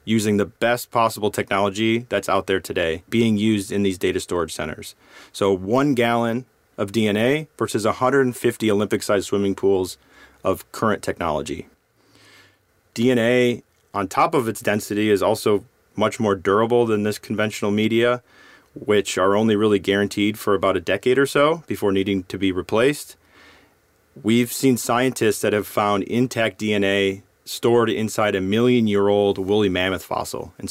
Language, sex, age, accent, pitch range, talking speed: English, male, 30-49, American, 100-115 Hz, 150 wpm